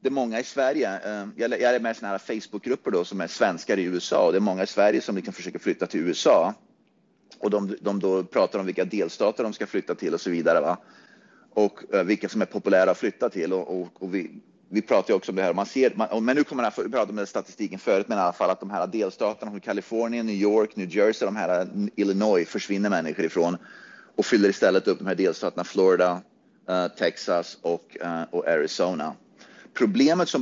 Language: Swedish